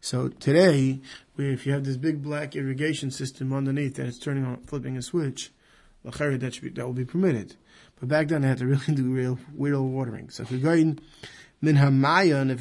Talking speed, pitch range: 210 wpm, 130-155 Hz